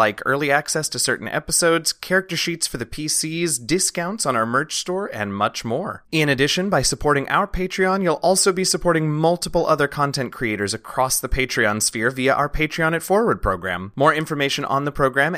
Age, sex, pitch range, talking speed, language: 30-49, male, 130-175 Hz, 185 wpm, English